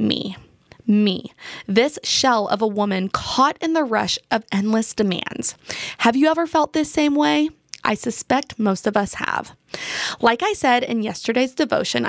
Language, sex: English, female